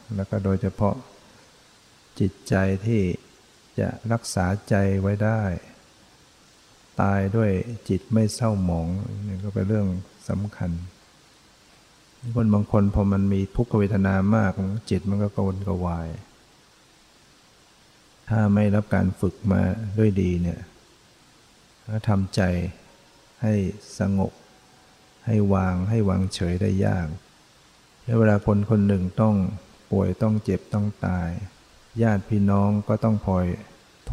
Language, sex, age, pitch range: Thai, male, 60-79, 95-110 Hz